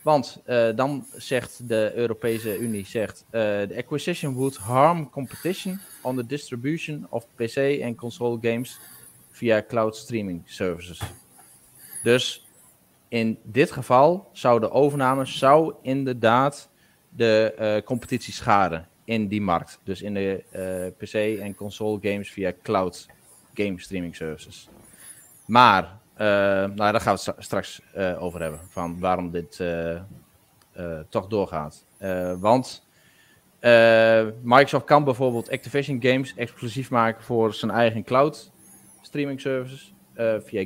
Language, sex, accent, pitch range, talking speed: Dutch, male, Dutch, 95-125 Hz, 135 wpm